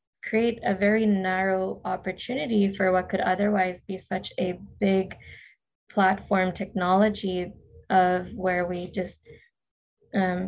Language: English